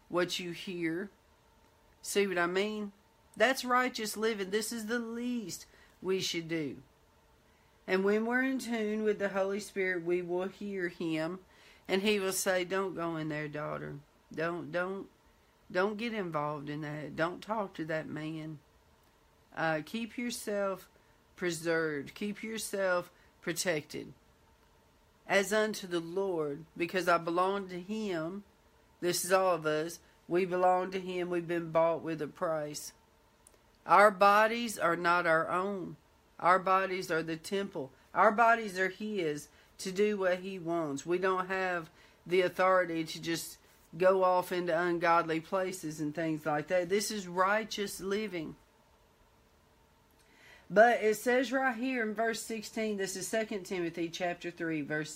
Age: 50-69